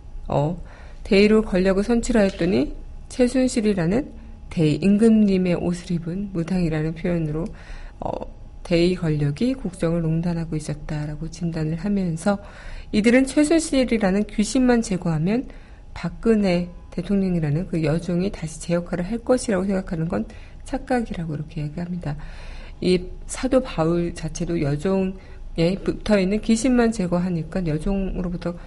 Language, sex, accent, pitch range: Korean, female, native, 170-220 Hz